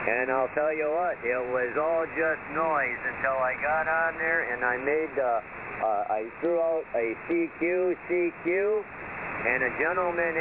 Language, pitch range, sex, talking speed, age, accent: English, 130-165 Hz, male, 160 wpm, 50-69, American